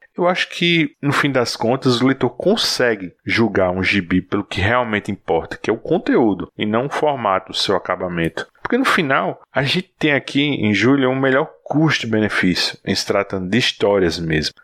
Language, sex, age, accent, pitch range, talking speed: Portuguese, male, 20-39, Brazilian, 105-140 Hz, 190 wpm